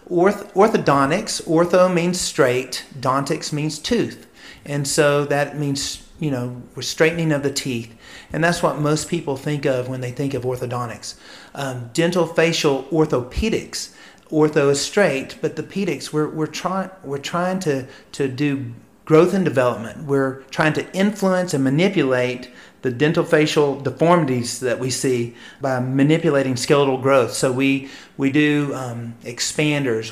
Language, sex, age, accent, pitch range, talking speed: English, male, 40-59, American, 135-165 Hz, 145 wpm